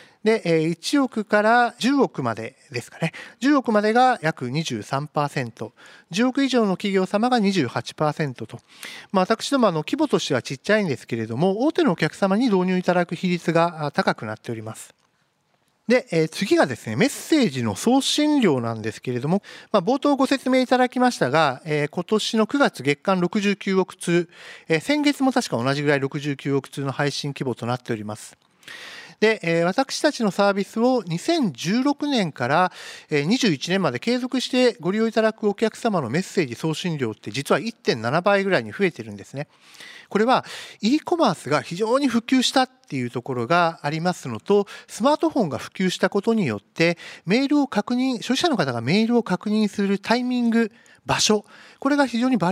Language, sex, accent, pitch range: Japanese, male, native, 150-240 Hz